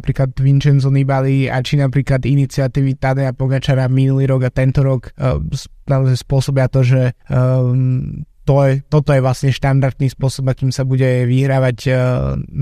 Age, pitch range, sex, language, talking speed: 20-39, 130-145 Hz, male, Slovak, 145 wpm